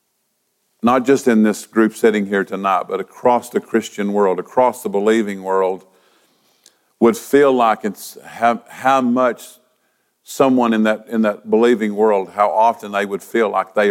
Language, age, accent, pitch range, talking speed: English, 50-69, American, 100-120 Hz, 160 wpm